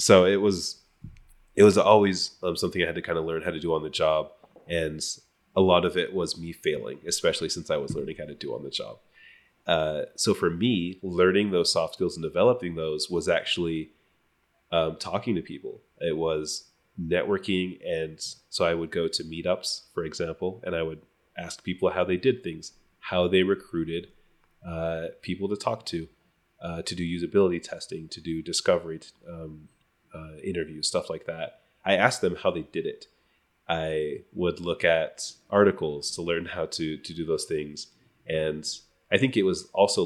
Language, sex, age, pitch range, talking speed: English, male, 30-49, 80-90 Hz, 190 wpm